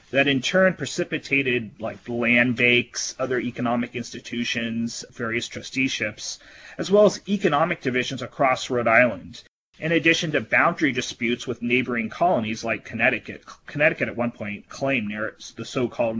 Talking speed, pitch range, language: 135 wpm, 120-145 Hz, English